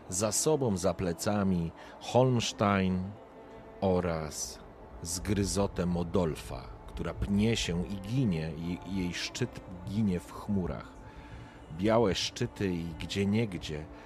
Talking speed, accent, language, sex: 105 wpm, native, Polish, male